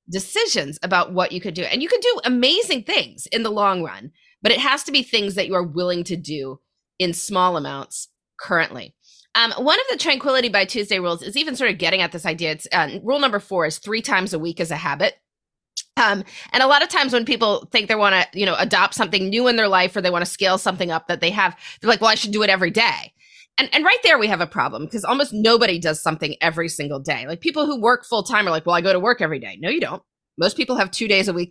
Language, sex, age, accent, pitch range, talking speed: English, female, 30-49, American, 165-230 Hz, 270 wpm